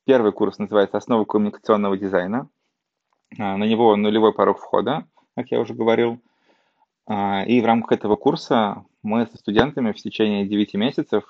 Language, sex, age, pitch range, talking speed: Russian, male, 20-39, 100-110 Hz, 145 wpm